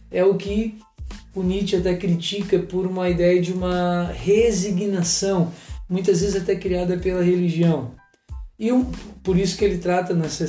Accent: Brazilian